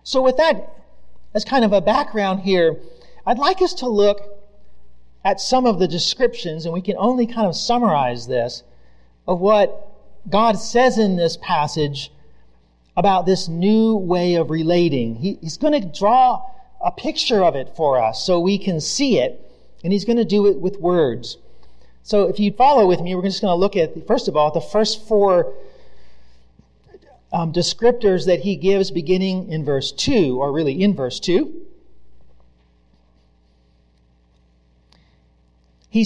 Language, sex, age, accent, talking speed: English, male, 40-59, American, 165 wpm